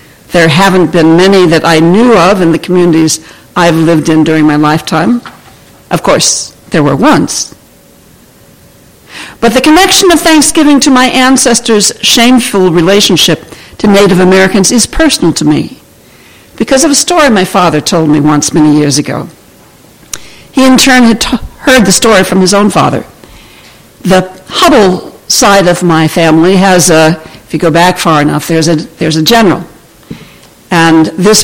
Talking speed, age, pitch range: 155 wpm, 60-79, 160-235 Hz